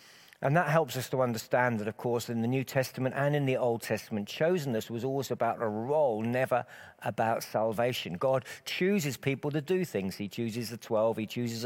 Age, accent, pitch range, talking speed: 50-69, British, 105-135 Hz, 200 wpm